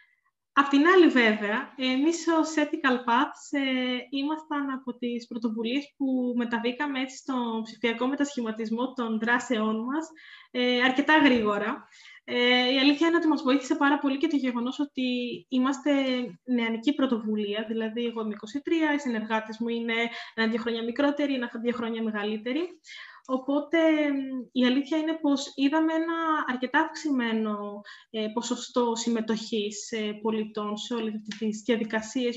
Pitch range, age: 225-290 Hz, 20-39